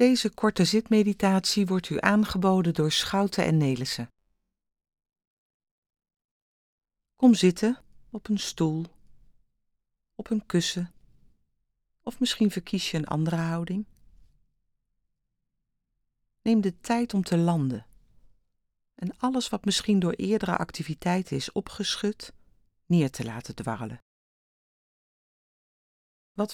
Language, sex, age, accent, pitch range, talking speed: Dutch, female, 40-59, Dutch, 165-210 Hz, 100 wpm